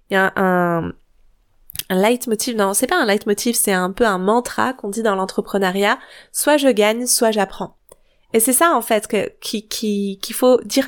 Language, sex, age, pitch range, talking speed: French, female, 20-39, 210-275 Hz, 205 wpm